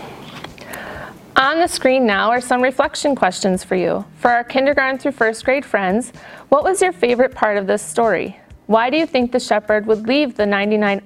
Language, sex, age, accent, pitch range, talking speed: English, female, 40-59, American, 205-260 Hz, 190 wpm